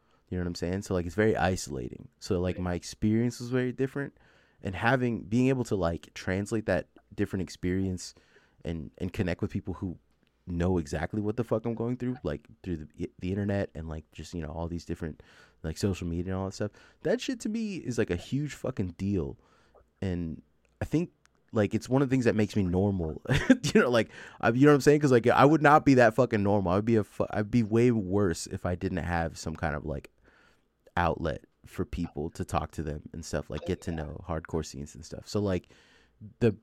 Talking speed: 220 wpm